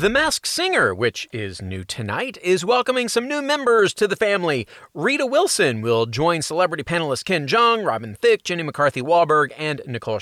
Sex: male